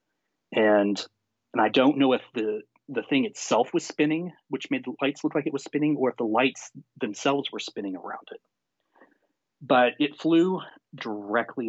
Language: English